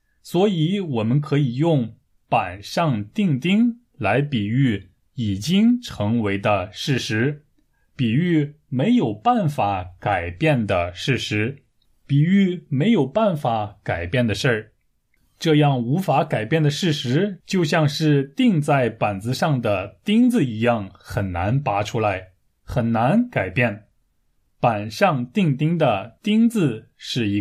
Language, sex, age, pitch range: Chinese, male, 20-39, 110-165 Hz